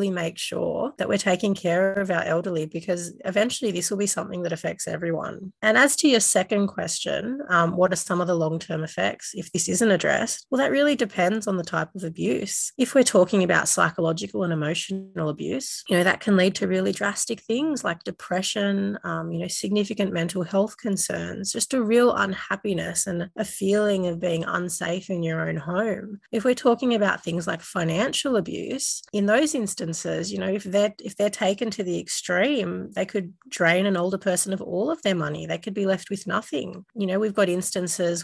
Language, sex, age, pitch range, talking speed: English, female, 30-49, 170-205 Hz, 200 wpm